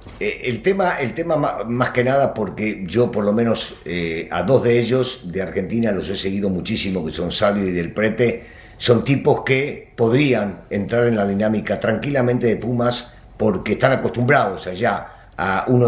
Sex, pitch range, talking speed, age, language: male, 110-150 Hz, 180 wpm, 50-69, Spanish